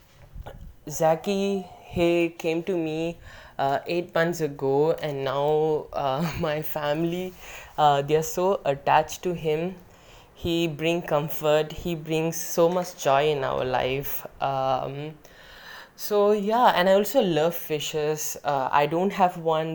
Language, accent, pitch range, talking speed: English, Indian, 140-170 Hz, 135 wpm